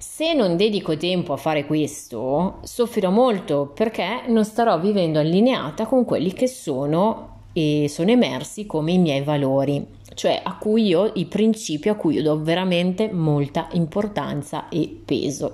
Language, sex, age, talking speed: Italian, female, 30-49, 155 wpm